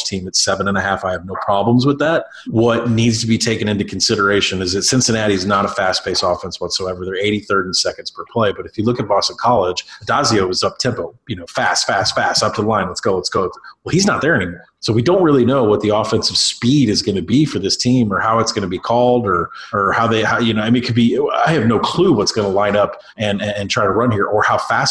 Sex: male